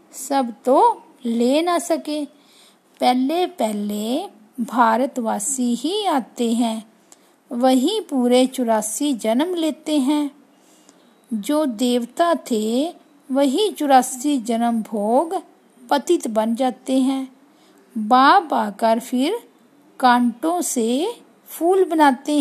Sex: female